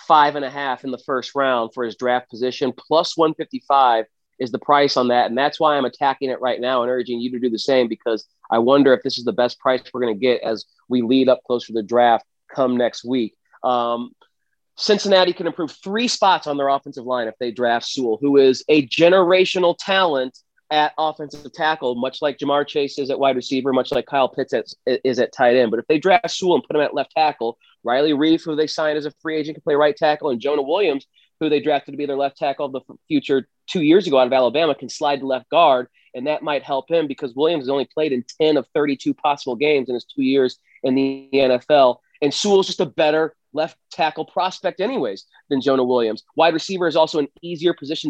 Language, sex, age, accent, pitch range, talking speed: English, male, 30-49, American, 130-170 Hz, 235 wpm